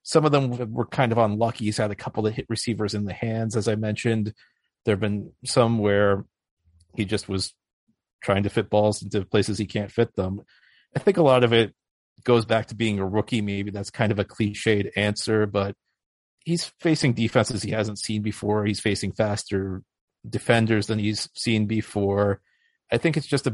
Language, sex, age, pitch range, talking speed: English, male, 40-59, 100-115 Hz, 195 wpm